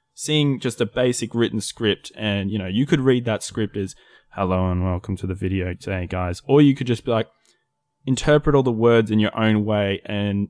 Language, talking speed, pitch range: English, 215 wpm, 105-130 Hz